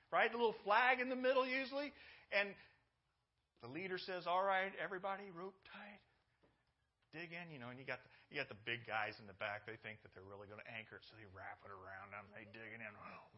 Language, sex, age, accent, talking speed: English, male, 40-59, American, 235 wpm